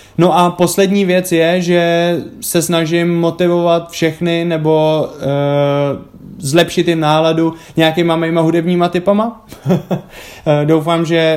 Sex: male